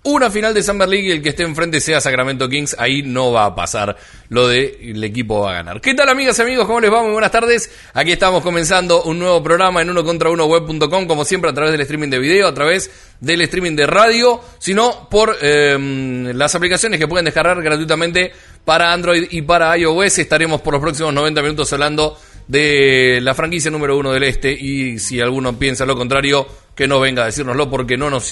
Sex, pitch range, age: male, 140-180 Hz, 30-49